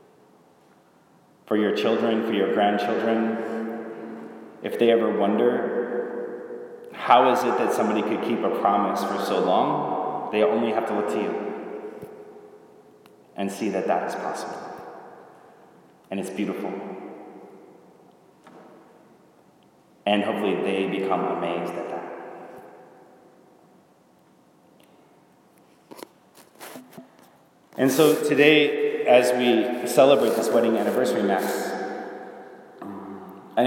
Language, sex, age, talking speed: English, male, 30-49, 100 wpm